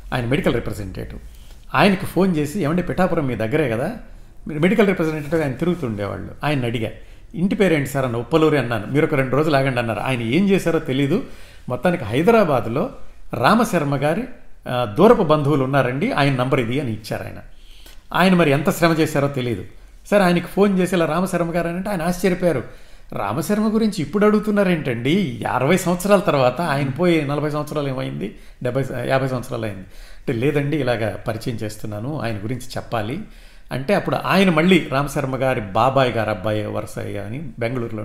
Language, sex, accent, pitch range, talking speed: Telugu, male, native, 120-170 Hz, 150 wpm